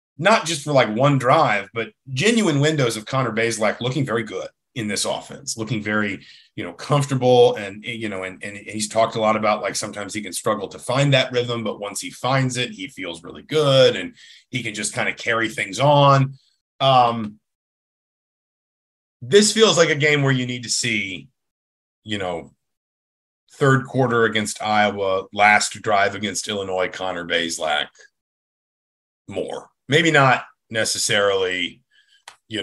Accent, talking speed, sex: American, 160 wpm, male